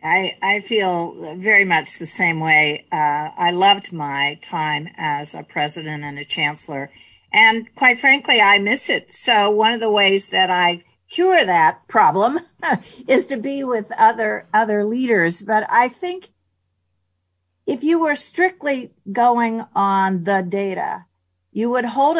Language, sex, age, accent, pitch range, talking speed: English, female, 50-69, American, 175-225 Hz, 150 wpm